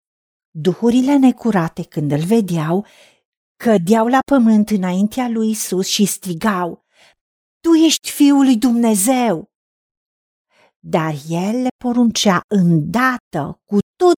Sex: female